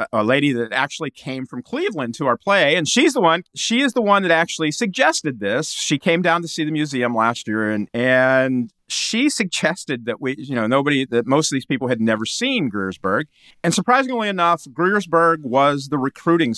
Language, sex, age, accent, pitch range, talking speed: English, male, 40-59, American, 115-155 Hz, 205 wpm